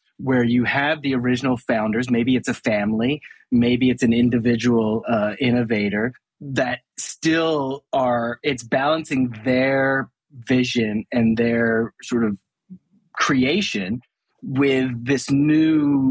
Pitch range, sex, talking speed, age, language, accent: 110-140 Hz, male, 115 wpm, 30-49, English, American